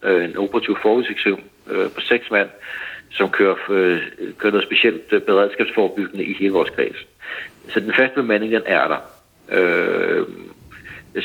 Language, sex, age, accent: Danish, male, 60-79, native